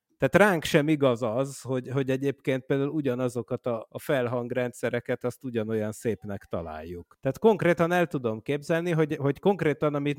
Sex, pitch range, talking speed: male, 115-145 Hz, 145 wpm